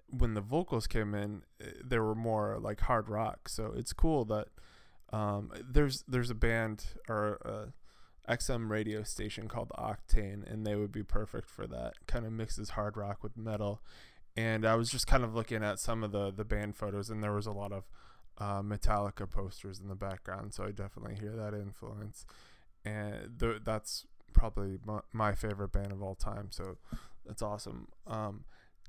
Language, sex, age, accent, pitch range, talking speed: English, male, 20-39, American, 100-115 Hz, 180 wpm